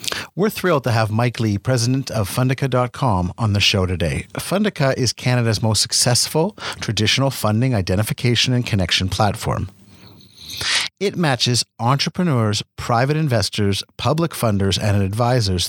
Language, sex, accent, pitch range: English, male, American, 100-135 Hz